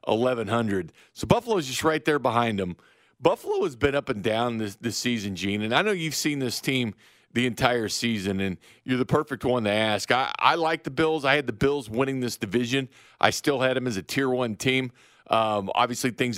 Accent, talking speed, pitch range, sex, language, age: American, 220 wpm, 115-160 Hz, male, English, 40-59